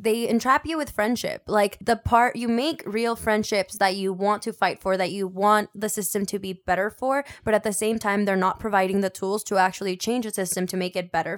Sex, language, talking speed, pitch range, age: female, English, 245 wpm, 195-240 Hz, 10-29